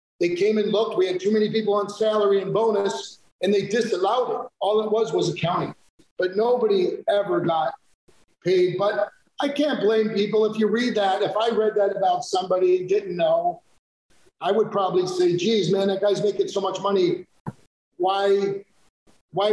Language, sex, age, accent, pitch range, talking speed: English, male, 50-69, American, 195-255 Hz, 180 wpm